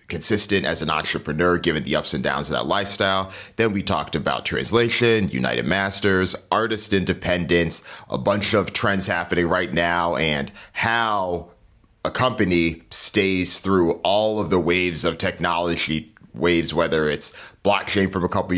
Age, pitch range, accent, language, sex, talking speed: 30-49, 85-105 Hz, American, English, male, 150 wpm